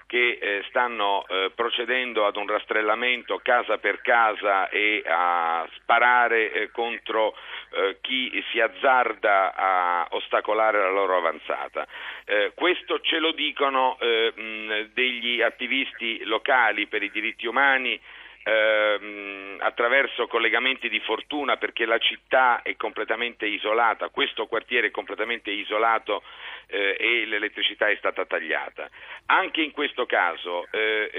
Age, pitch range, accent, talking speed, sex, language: 50-69, 105-135 Hz, native, 110 wpm, male, Italian